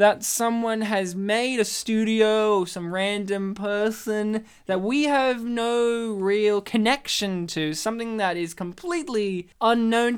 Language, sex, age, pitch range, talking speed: English, male, 20-39, 155-210 Hz, 130 wpm